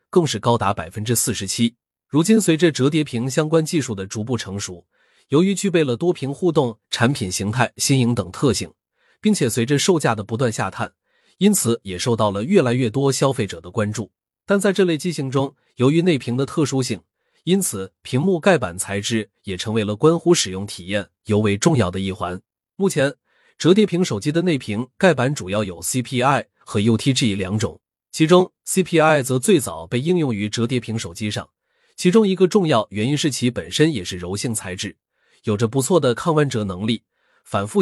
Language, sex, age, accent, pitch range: Chinese, male, 30-49, native, 105-160 Hz